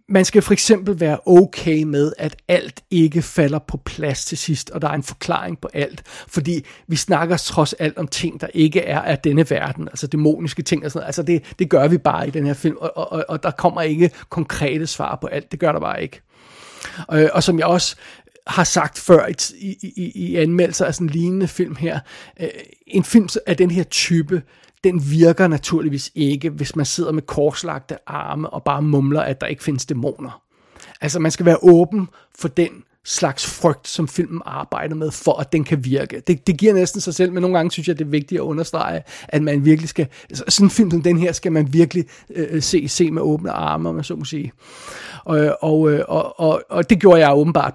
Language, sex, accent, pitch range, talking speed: Danish, male, native, 150-180 Hz, 220 wpm